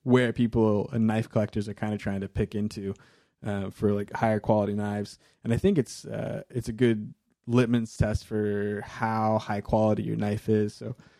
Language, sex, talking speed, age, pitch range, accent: English, male, 195 wpm, 20-39, 105-135 Hz, American